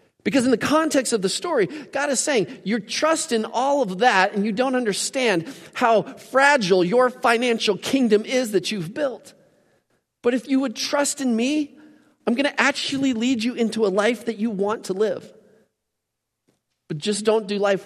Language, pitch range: English, 150-245 Hz